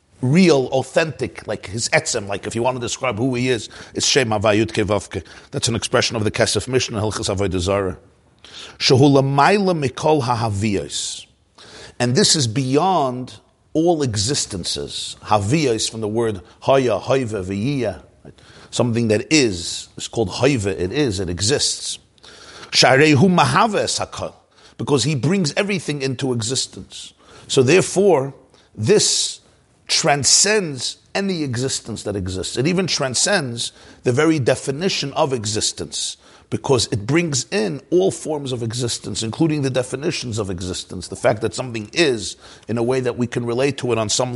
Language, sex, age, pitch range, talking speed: English, male, 50-69, 110-150 Hz, 140 wpm